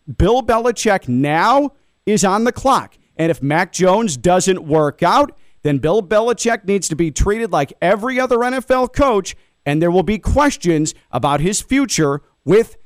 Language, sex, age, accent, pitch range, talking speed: English, male, 40-59, American, 170-230 Hz, 165 wpm